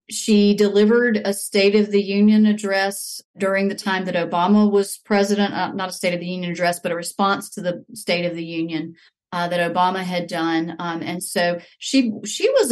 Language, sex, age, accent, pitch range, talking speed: English, female, 40-59, American, 190-220 Hz, 205 wpm